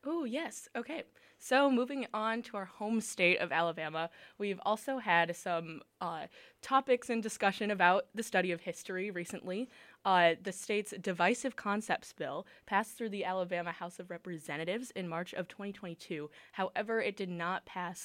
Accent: American